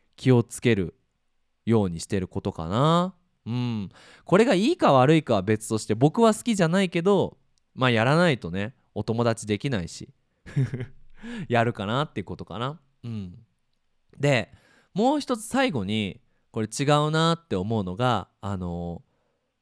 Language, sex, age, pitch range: Japanese, male, 20-39, 105-160 Hz